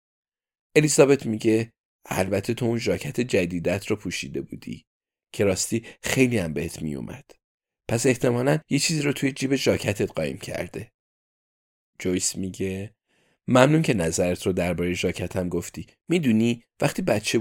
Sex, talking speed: male, 135 wpm